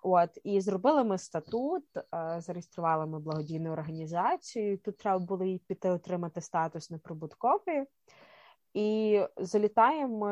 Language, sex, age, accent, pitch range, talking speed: Ukrainian, female, 20-39, native, 170-210 Hz, 115 wpm